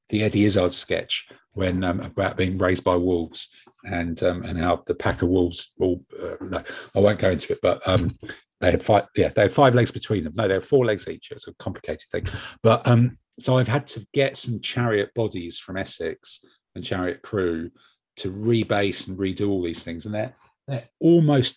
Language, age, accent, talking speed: English, 50-69, British, 210 wpm